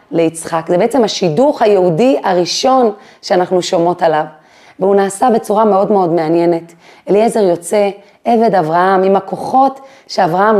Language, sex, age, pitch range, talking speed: Hebrew, female, 30-49, 190-240 Hz, 125 wpm